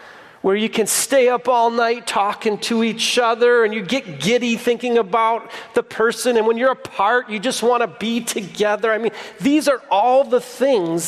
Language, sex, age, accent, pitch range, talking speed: English, male, 40-59, American, 190-245 Hz, 190 wpm